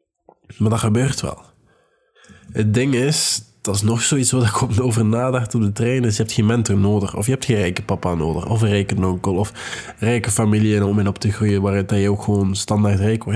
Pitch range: 100-120 Hz